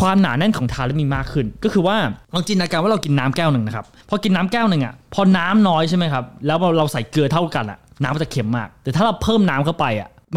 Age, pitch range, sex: 20-39, 130-185 Hz, male